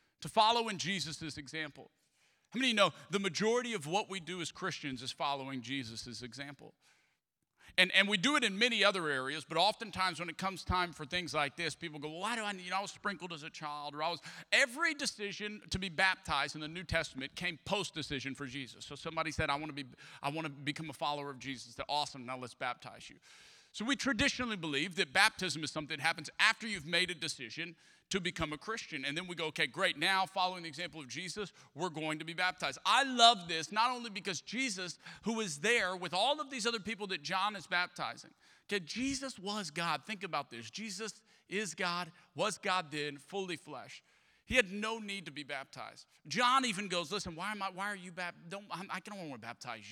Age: 40-59